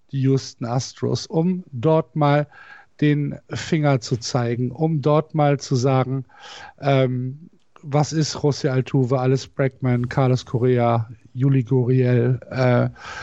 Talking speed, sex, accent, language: 120 wpm, male, German, German